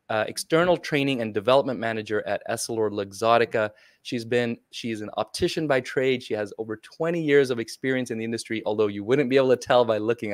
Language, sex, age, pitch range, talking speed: English, male, 20-39, 110-130 Hz, 205 wpm